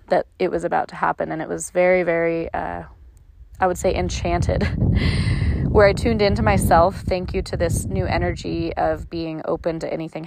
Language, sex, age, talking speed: English, female, 20-39, 185 wpm